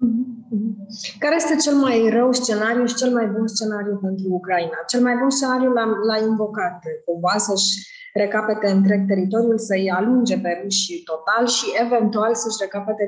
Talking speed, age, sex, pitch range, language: 160 wpm, 20-39, female, 185-230 Hz, Romanian